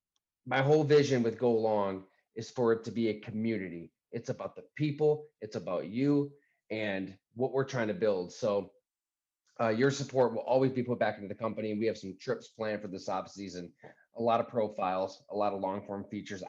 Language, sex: English, male